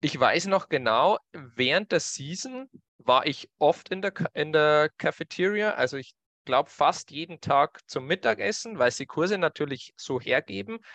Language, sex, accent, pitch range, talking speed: German, male, German, 125-175 Hz, 165 wpm